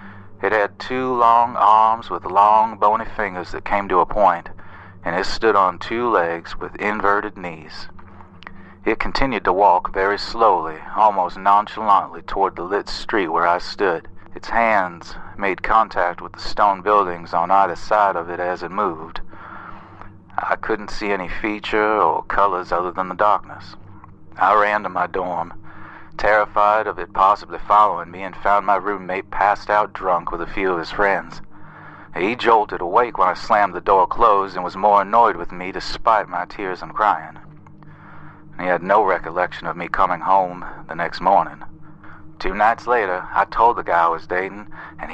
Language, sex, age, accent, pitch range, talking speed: English, male, 40-59, American, 90-105 Hz, 175 wpm